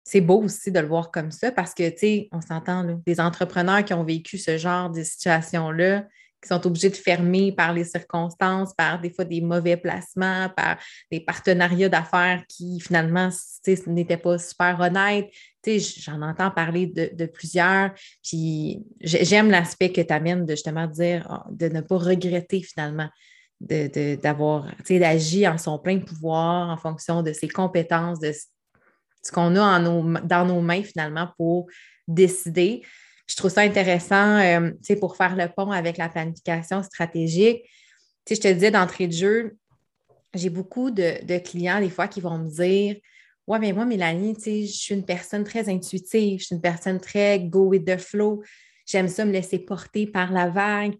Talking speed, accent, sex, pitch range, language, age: 190 wpm, Canadian, female, 170-195 Hz, French, 30-49